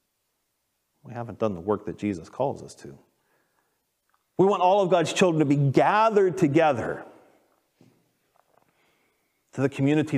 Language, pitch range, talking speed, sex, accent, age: English, 105-145 Hz, 135 wpm, male, American, 40-59